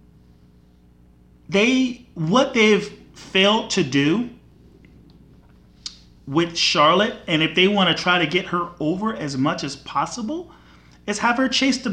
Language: English